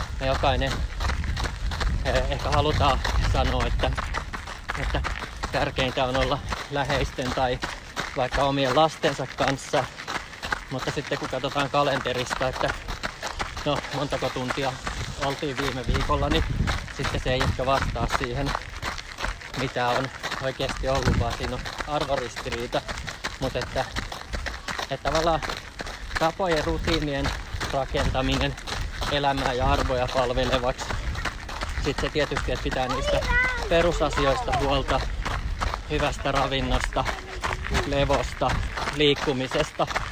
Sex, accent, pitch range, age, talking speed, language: male, native, 125-145 Hz, 20-39, 95 wpm, Finnish